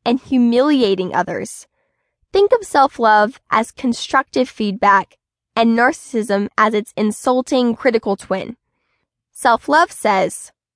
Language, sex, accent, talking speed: English, female, American, 100 wpm